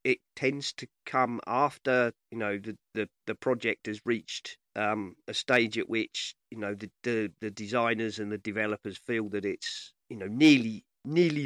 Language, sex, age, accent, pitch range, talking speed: English, male, 40-59, British, 110-135 Hz, 180 wpm